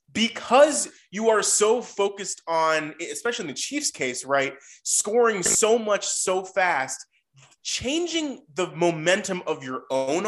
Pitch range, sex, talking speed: 150-205 Hz, male, 135 wpm